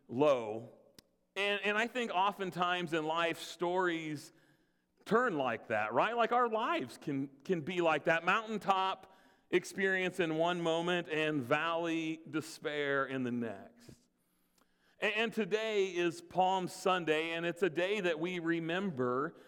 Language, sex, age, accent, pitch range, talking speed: English, male, 40-59, American, 155-200 Hz, 140 wpm